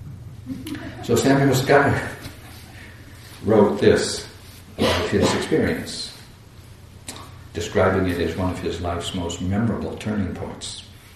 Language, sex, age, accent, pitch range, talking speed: English, male, 60-79, American, 90-110 Hz, 100 wpm